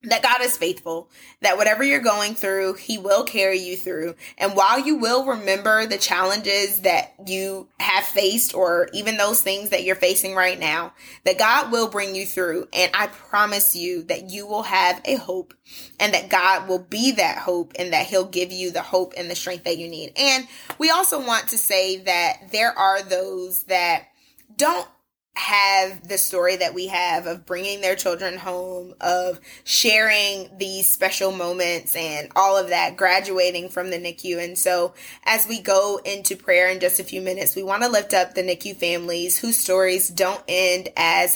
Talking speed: 190 wpm